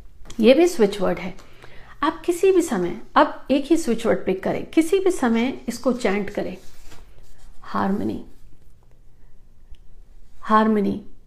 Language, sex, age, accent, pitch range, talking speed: Hindi, female, 50-69, native, 195-250 Hz, 130 wpm